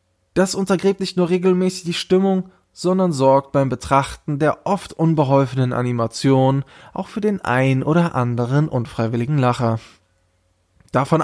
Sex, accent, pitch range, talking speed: male, German, 120-180 Hz, 130 wpm